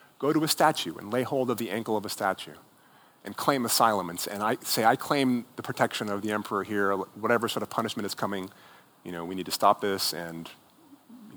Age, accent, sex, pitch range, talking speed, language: 30-49, American, male, 100-145 Hz, 220 wpm, Dutch